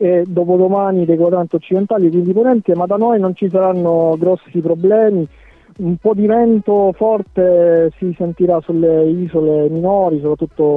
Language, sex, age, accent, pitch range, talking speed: Italian, male, 40-59, native, 155-180 Hz, 150 wpm